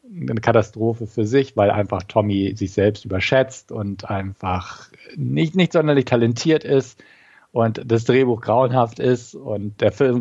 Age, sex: 50-69, male